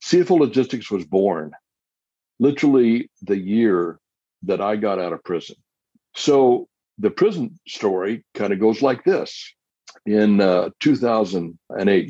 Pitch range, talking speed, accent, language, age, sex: 95-120 Hz, 125 wpm, American, English, 60-79, male